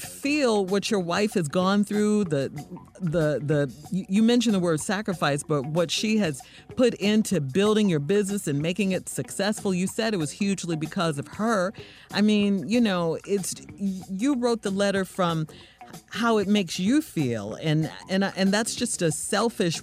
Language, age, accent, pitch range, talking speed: English, 40-59, American, 145-200 Hz, 175 wpm